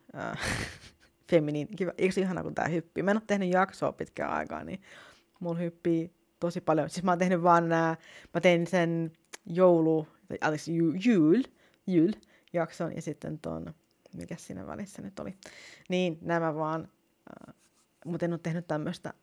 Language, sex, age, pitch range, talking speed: Finnish, female, 30-49, 155-195 Hz, 160 wpm